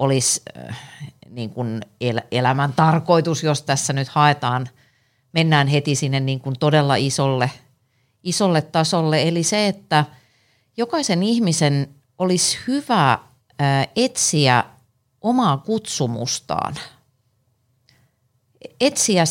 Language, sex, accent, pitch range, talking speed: Finnish, female, native, 125-170 Hz, 105 wpm